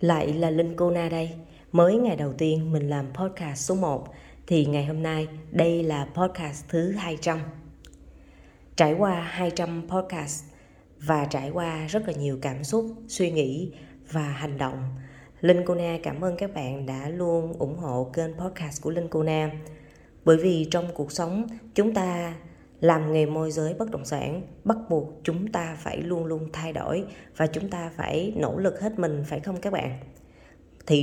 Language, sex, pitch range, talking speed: Vietnamese, female, 145-180 Hz, 175 wpm